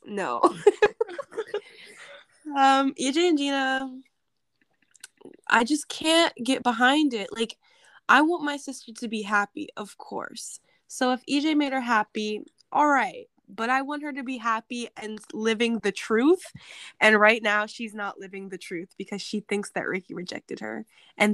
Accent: American